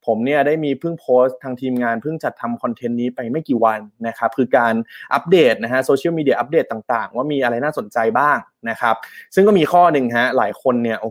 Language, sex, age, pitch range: Thai, male, 20-39, 115-145 Hz